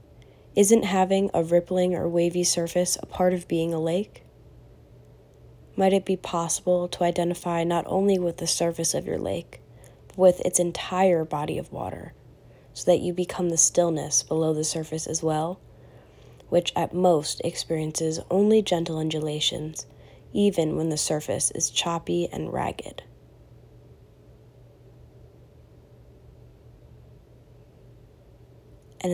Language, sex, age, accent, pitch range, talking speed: English, female, 20-39, American, 160-180 Hz, 125 wpm